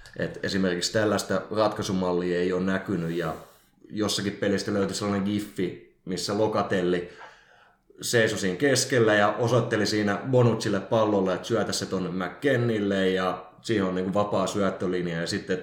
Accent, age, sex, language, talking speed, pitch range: native, 30-49, male, Finnish, 130 wpm, 90-105 Hz